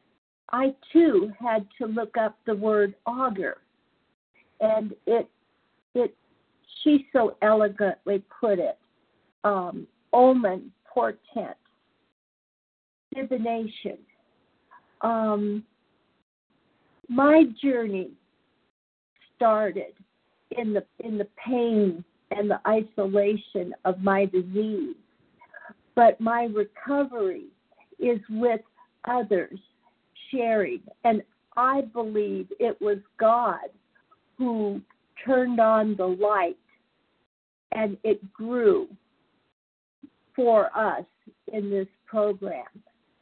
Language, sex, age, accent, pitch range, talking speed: English, female, 50-69, American, 205-245 Hz, 85 wpm